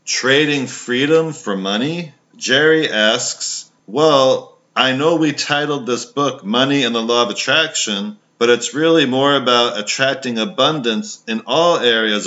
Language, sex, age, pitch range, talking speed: English, male, 40-59, 115-145 Hz, 140 wpm